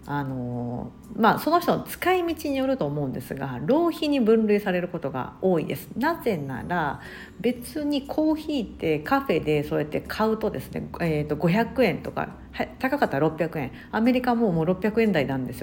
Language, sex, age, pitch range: Japanese, female, 50-69, 150-235 Hz